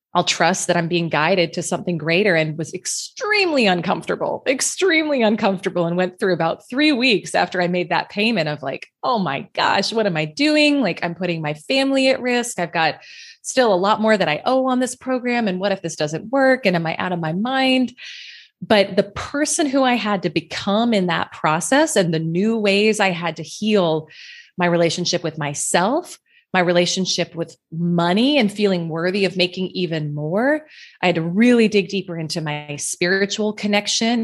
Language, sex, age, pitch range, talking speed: English, female, 20-39, 175-245 Hz, 195 wpm